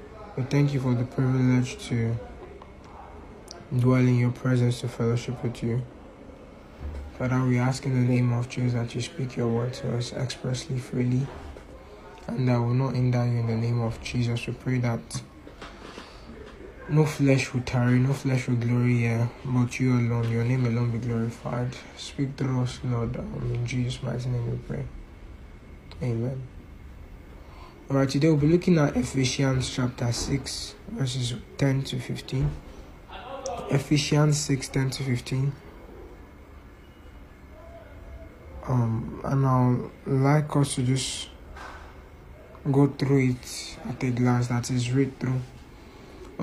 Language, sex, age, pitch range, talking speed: English, male, 20-39, 120-135 Hz, 145 wpm